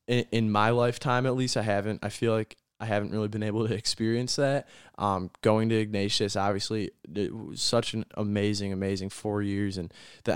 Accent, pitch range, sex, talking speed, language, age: American, 100-120 Hz, male, 190 wpm, English, 20-39